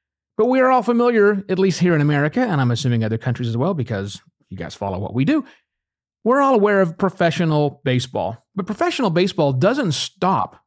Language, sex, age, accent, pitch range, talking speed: English, male, 40-59, American, 120-195 Hz, 195 wpm